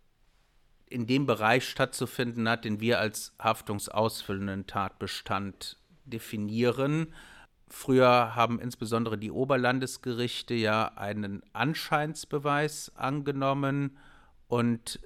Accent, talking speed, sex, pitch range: German, 85 wpm, male, 110-130 Hz